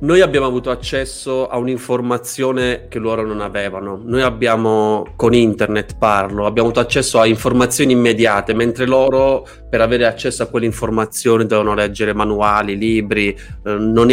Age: 20-39